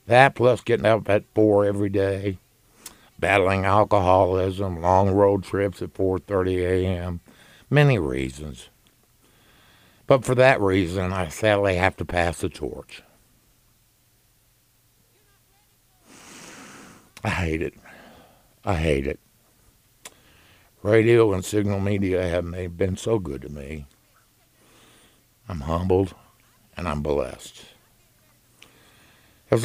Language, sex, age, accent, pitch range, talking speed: English, male, 60-79, American, 85-115 Hz, 105 wpm